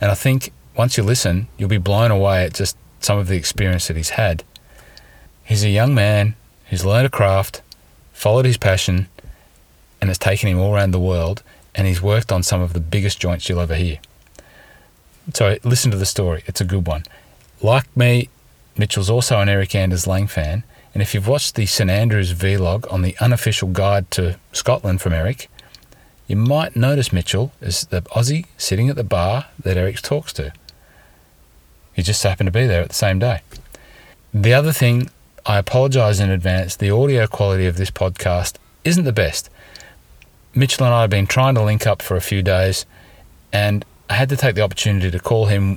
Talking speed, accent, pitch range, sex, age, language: 195 wpm, Australian, 90-115 Hz, male, 30-49, English